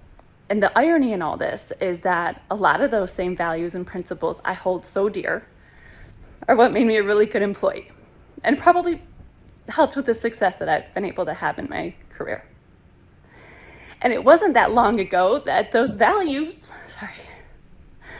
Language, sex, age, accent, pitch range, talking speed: English, female, 20-39, American, 185-245 Hz, 175 wpm